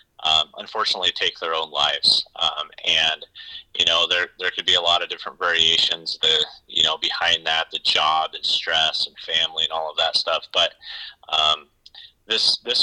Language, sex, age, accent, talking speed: English, male, 30-49, American, 185 wpm